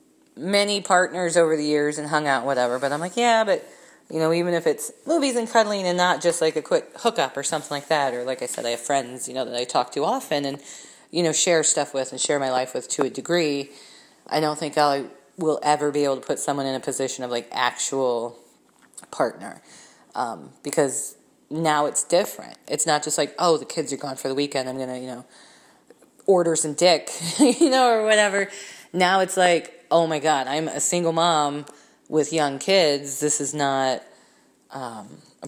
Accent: American